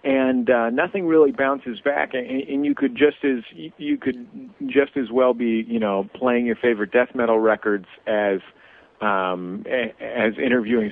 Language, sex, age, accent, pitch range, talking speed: English, male, 50-69, American, 105-130 Hz, 165 wpm